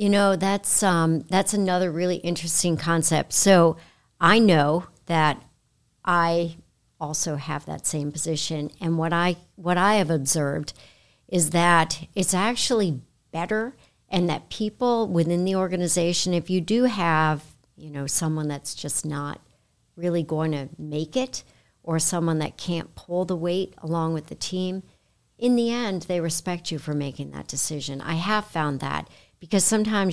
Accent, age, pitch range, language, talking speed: American, 50-69, 155-195 Hz, English, 155 wpm